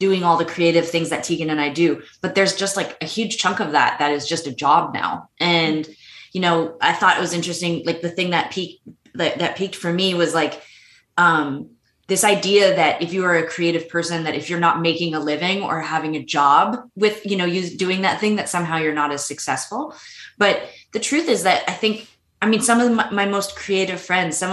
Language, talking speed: English, 230 wpm